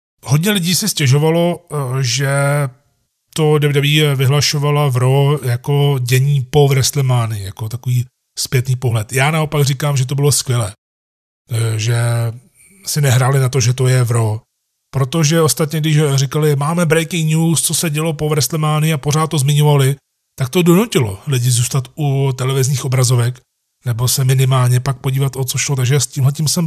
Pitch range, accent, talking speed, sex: 125-150 Hz, native, 155 wpm, male